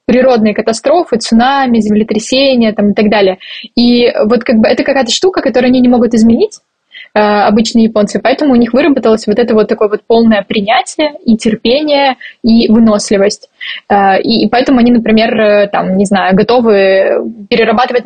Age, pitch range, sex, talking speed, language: 20-39, 215-255 Hz, female, 155 wpm, Russian